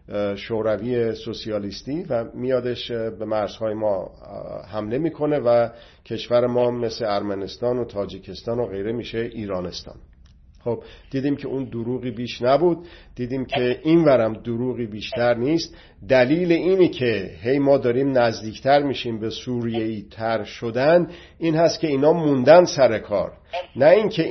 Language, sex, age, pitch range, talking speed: Persian, male, 50-69, 115-145 Hz, 135 wpm